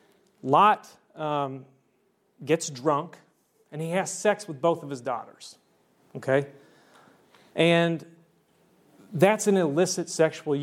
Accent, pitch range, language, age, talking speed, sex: American, 135-165 Hz, English, 30-49, 105 wpm, male